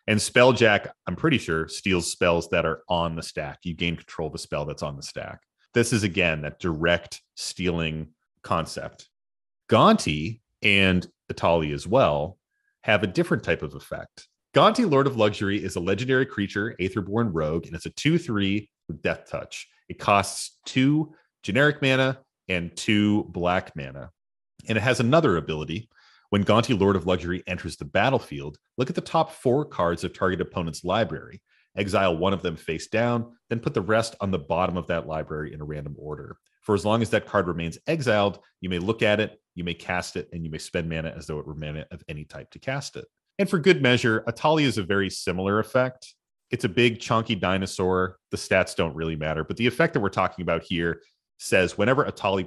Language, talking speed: English, 200 wpm